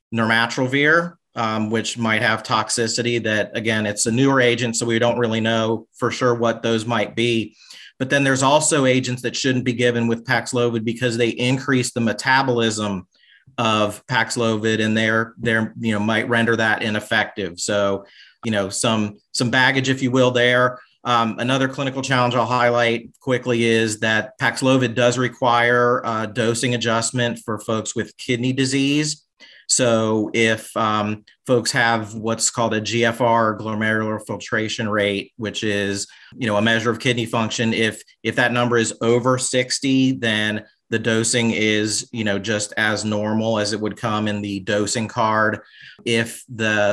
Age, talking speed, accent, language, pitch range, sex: 40-59, 160 wpm, American, English, 110-125 Hz, male